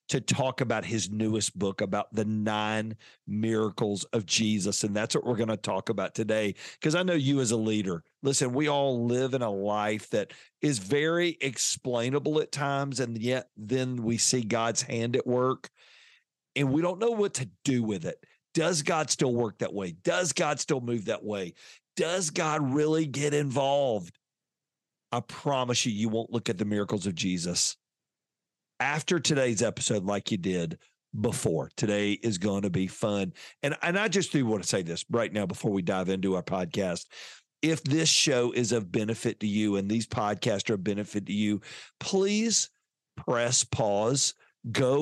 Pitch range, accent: 105-140 Hz, American